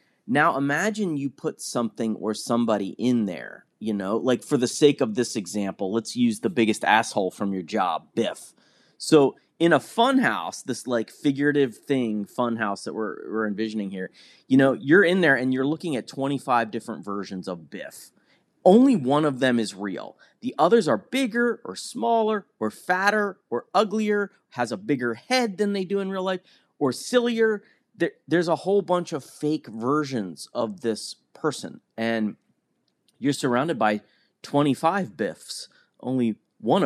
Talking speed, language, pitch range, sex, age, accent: 165 wpm, English, 110-165 Hz, male, 30-49, American